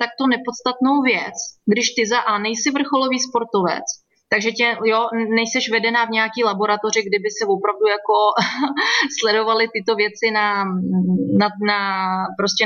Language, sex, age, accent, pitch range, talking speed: Czech, female, 30-49, native, 205-245 Hz, 140 wpm